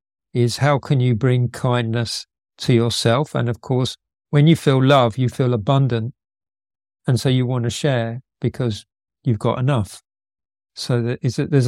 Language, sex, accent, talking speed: English, male, British, 155 wpm